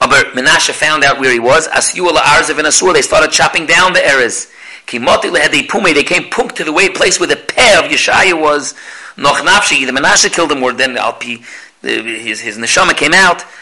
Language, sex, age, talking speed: English, male, 40-59, 205 wpm